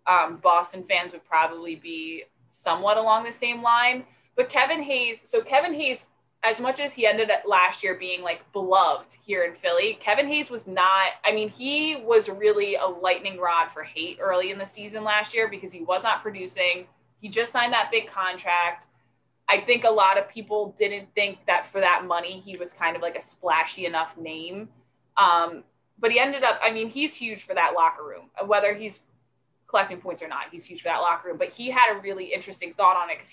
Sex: female